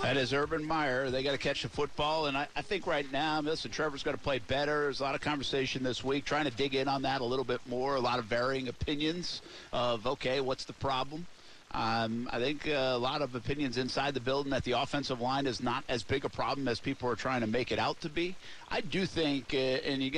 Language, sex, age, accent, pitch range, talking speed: English, male, 50-69, American, 125-145 Hz, 255 wpm